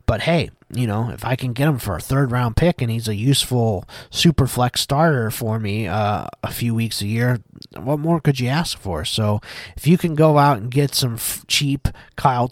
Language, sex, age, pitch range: English, male, 30-49, 110-140 Hz